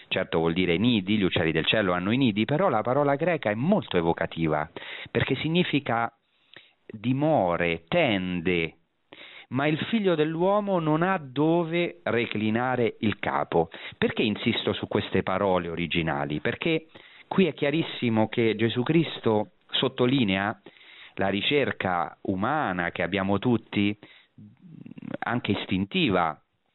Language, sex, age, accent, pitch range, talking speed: Italian, male, 40-59, native, 95-135 Hz, 120 wpm